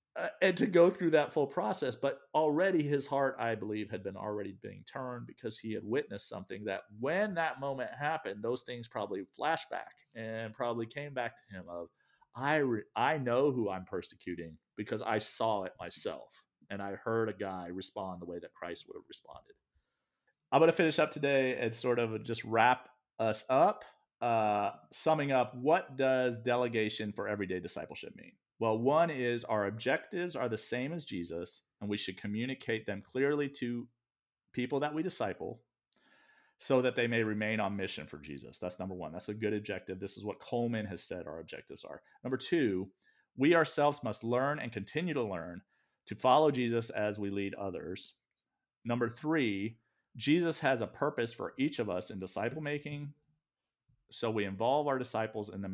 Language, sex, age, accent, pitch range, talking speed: English, male, 40-59, American, 105-140 Hz, 185 wpm